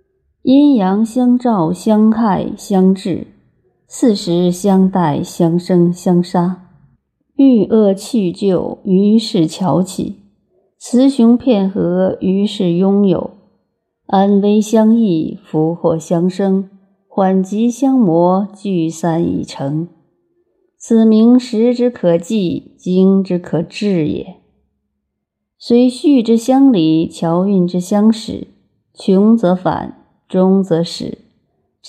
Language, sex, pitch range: Chinese, female, 175-225 Hz